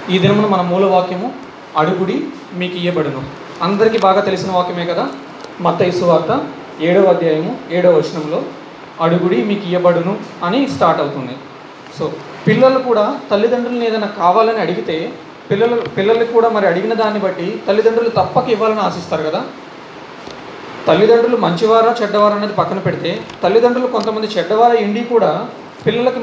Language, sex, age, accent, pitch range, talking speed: Telugu, male, 30-49, native, 190-230 Hz, 130 wpm